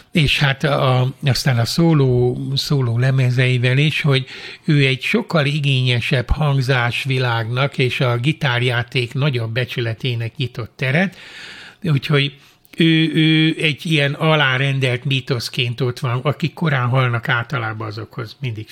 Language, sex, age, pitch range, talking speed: Hungarian, male, 60-79, 125-150 Hz, 120 wpm